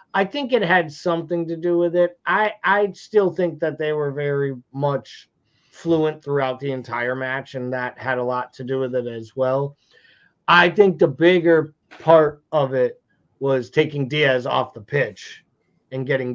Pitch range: 130-160 Hz